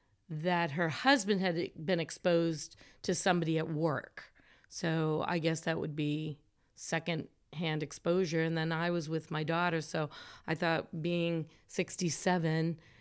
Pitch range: 155-175 Hz